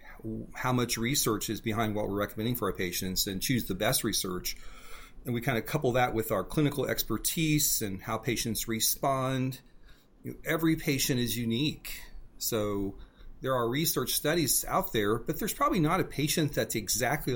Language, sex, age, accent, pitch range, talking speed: English, male, 40-59, American, 110-140 Hz, 175 wpm